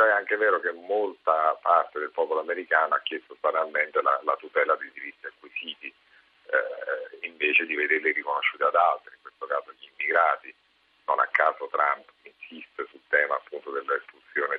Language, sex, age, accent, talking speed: Italian, male, 50-69, native, 160 wpm